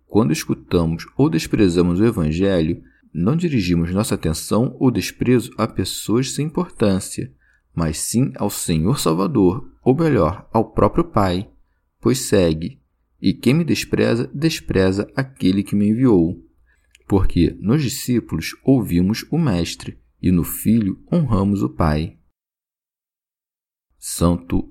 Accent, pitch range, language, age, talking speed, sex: Brazilian, 85-125 Hz, Portuguese, 40-59, 120 wpm, male